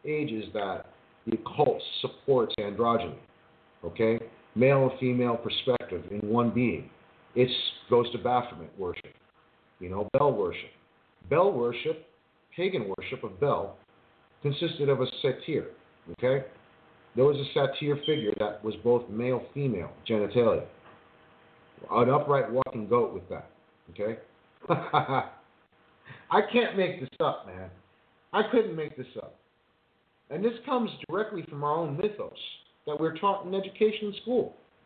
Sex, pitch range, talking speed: male, 115-160 Hz, 135 wpm